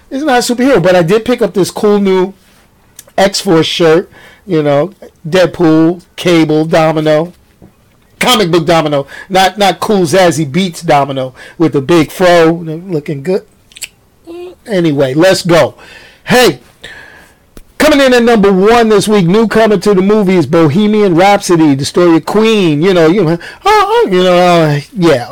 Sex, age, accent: male, 50-69, American